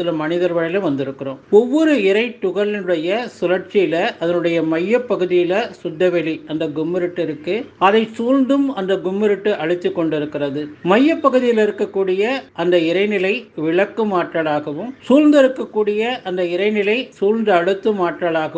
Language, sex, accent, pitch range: Tamil, male, native, 170-215 Hz